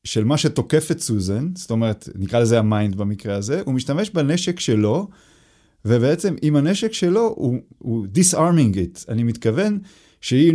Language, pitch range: Hebrew, 110-165 Hz